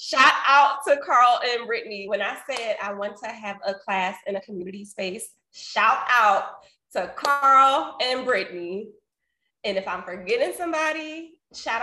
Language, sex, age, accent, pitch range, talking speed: English, female, 20-39, American, 180-240 Hz, 155 wpm